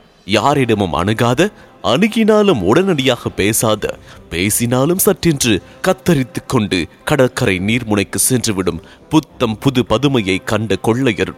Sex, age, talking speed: male, 30-49, 110 wpm